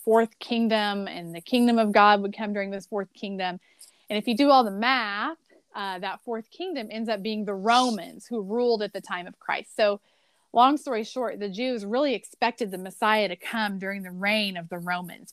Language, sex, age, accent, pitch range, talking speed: English, female, 30-49, American, 205-265 Hz, 210 wpm